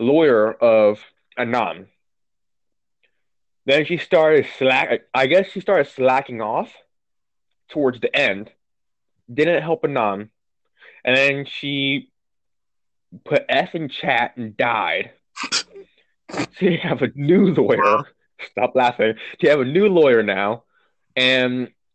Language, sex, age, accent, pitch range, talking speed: English, male, 20-39, American, 120-160 Hz, 120 wpm